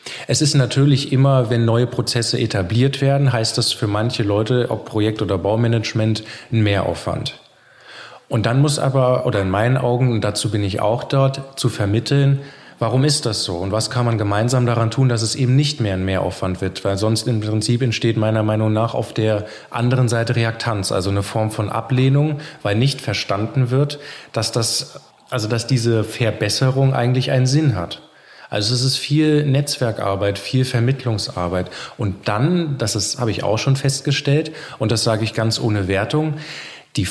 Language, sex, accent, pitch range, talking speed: German, male, German, 110-135 Hz, 175 wpm